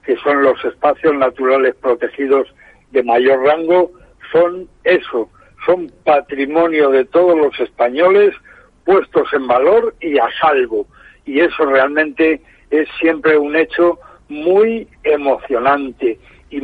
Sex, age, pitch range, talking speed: male, 60-79, 135-175 Hz, 120 wpm